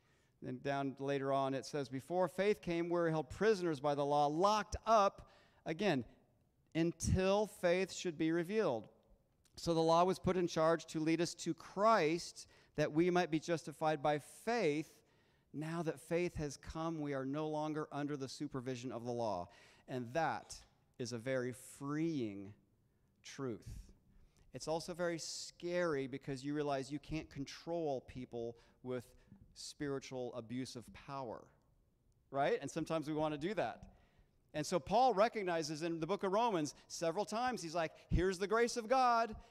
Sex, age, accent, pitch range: male, 40-59, American, 145-195 Hz